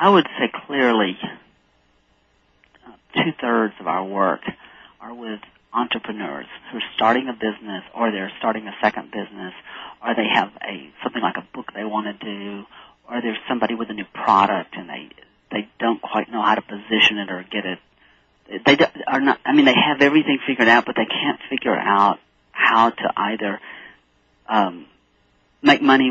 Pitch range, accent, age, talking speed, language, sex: 105-125 Hz, American, 40-59, 175 wpm, English, male